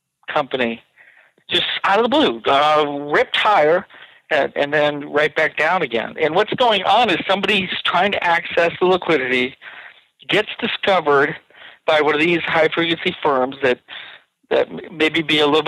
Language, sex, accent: English, male, American